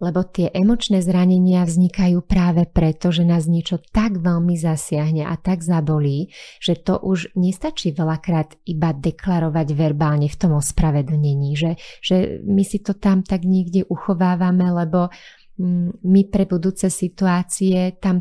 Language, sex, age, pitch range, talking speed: Slovak, female, 30-49, 160-185 Hz, 140 wpm